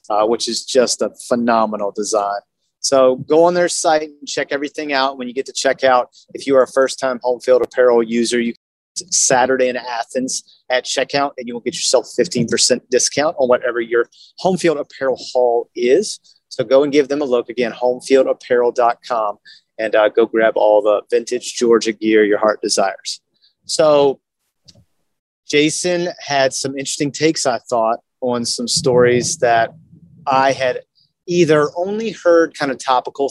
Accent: American